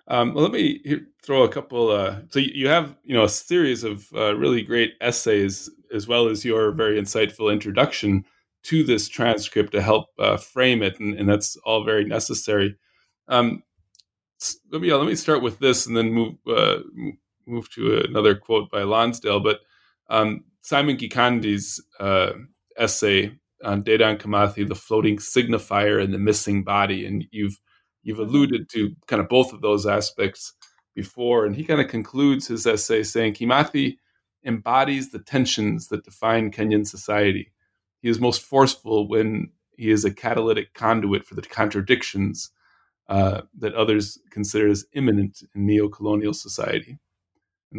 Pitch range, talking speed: 100-120 Hz, 160 wpm